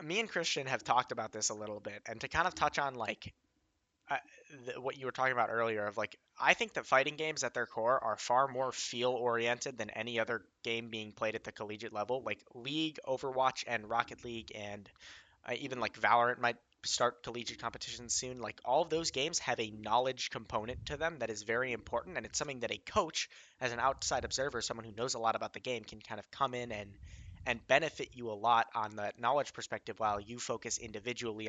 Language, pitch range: English, 110-130 Hz